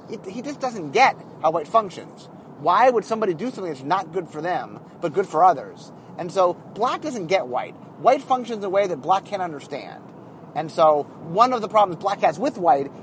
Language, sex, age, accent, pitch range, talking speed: English, male, 30-49, American, 160-225 Hz, 210 wpm